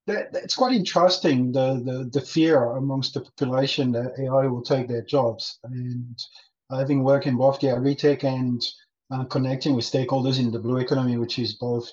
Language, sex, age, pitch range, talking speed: English, male, 40-59, 120-145 Hz, 175 wpm